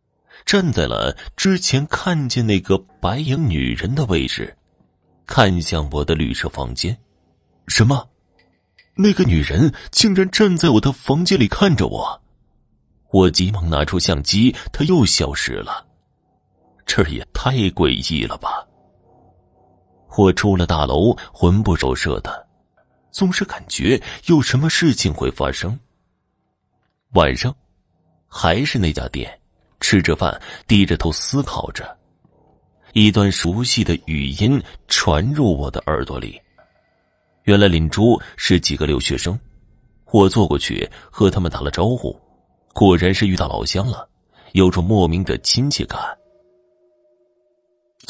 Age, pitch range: 30-49, 85-125 Hz